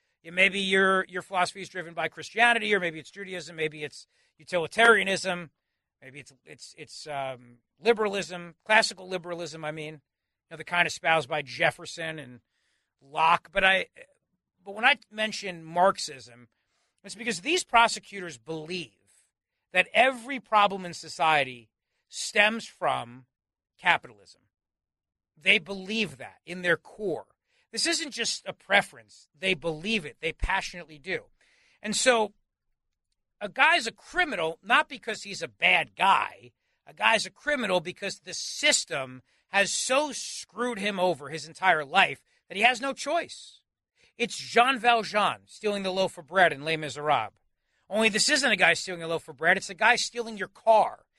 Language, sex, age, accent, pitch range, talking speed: English, male, 40-59, American, 160-220 Hz, 150 wpm